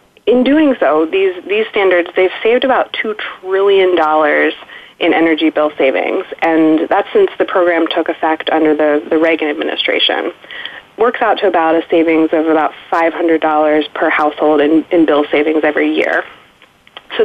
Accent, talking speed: American, 165 wpm